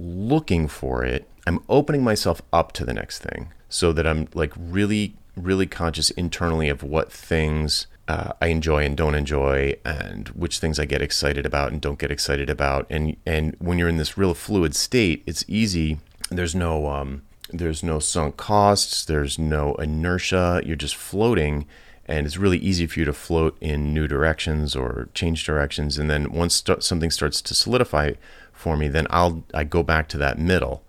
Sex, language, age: male, English, 30-49